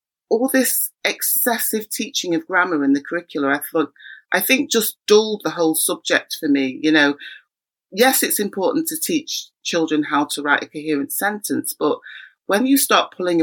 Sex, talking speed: female, 175 wpm